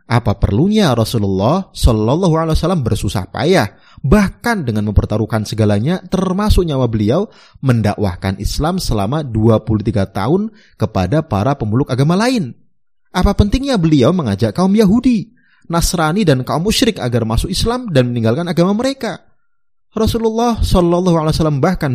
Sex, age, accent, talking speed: male, 30-49, native, 120 wpm